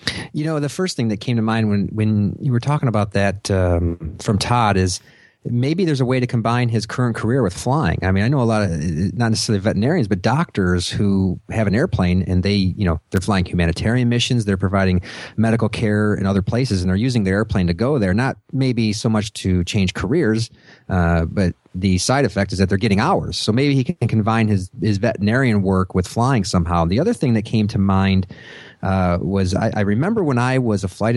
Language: English